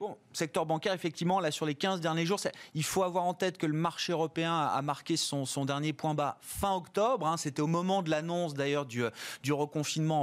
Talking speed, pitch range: 230 wpm, 140-180 Hz